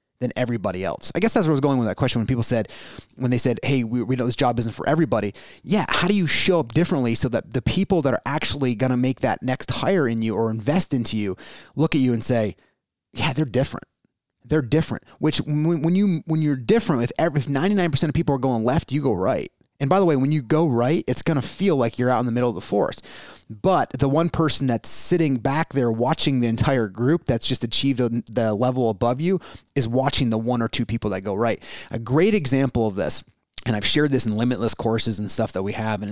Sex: male